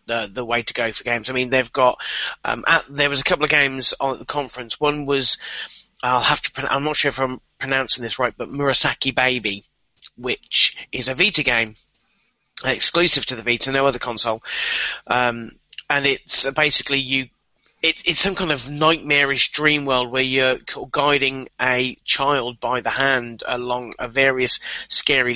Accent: British